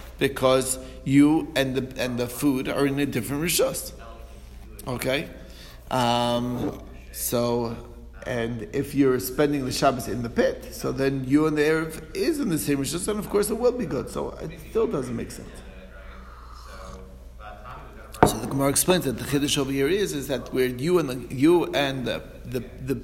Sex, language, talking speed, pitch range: male, English, 165 wpm, 115-145 Hz